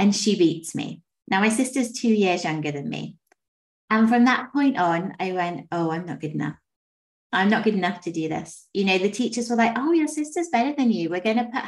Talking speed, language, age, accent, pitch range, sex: 235 wpm, English, 30-49, British, 185-235 Hz, female